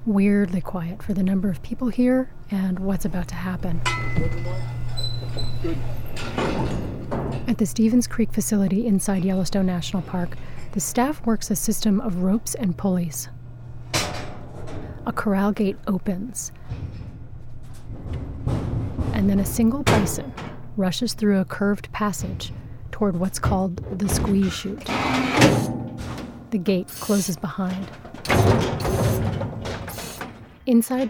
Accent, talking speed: American, 110 wpm